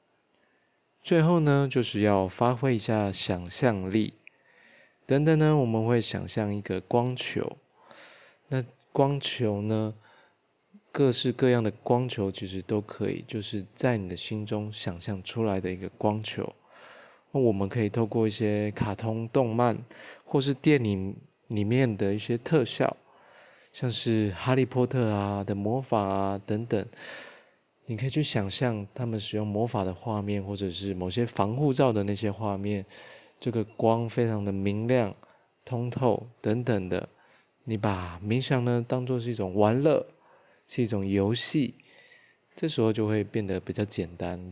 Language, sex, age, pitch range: Chinese, male, 20-39, 100-125 Hz